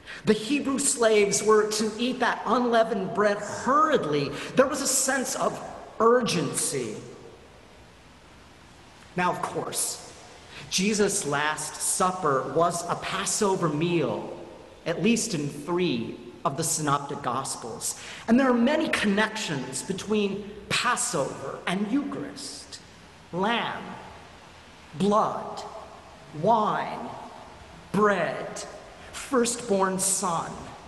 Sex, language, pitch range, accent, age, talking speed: male, English, 155-230 Hz, American, 40-59, 95 wpm